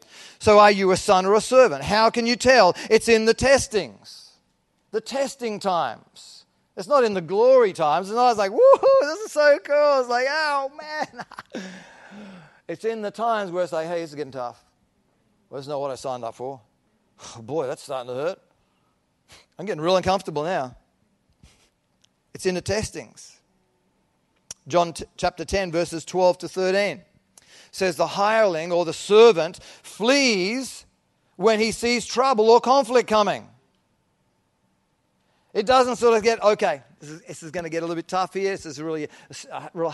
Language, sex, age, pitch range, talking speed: English, male, 40-59, 135-220 Hz, 175 wpm